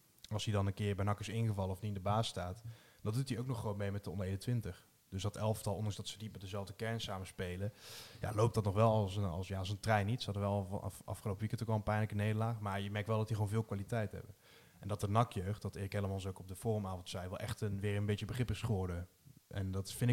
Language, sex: Dutch, male